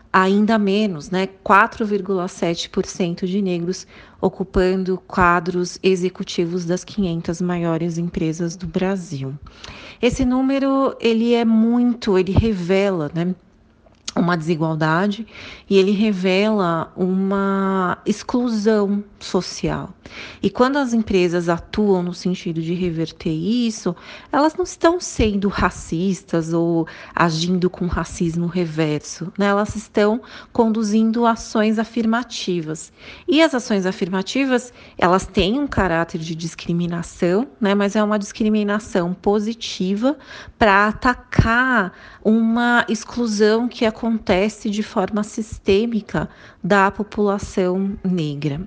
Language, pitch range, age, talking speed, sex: Portuguese, 180-220 Hz, 30-49, 105 wpm, female